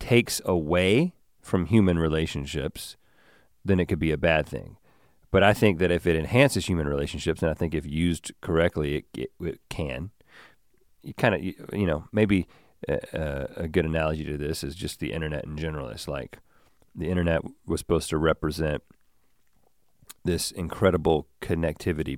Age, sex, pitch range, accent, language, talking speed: 40-59, male, 75-95 Hz, American, English, 165 wpm